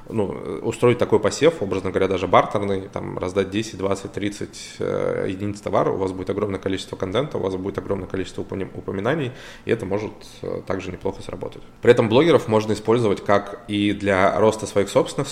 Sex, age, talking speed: male, 20-39, 170 wpm